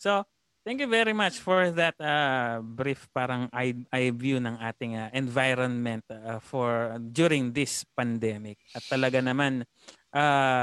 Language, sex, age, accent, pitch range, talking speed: Filipino, male, 20-39, native, 120-140 Hz, 140 wpm